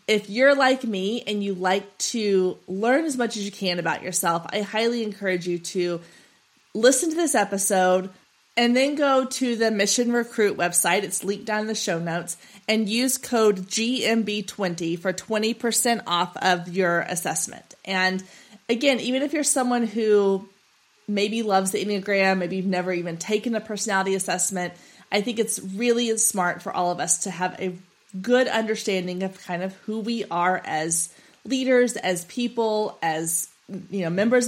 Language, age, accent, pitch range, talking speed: English, 30-49, American, 185-230 Hz, 170 wpm